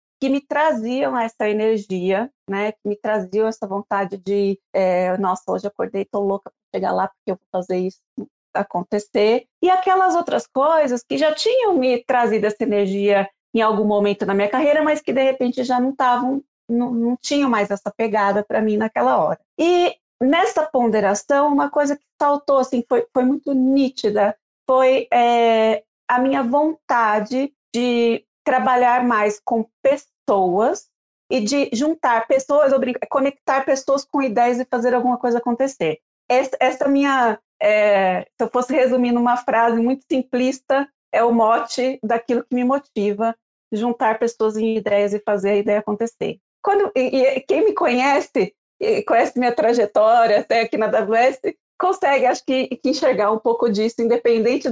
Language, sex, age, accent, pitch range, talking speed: Portuguese, female, 30-49, Brazilian, 215-270 Hz, 160 wpm